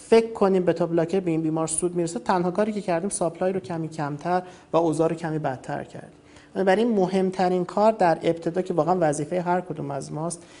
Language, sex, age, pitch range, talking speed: Persian, male, 50-69, 155-190 Hz, 200 wpm